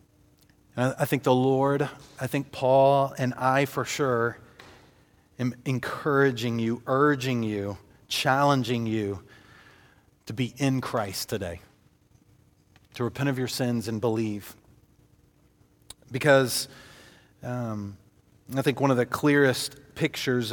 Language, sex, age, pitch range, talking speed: English, male, 40-59, 115-130 Hz, 115 wpm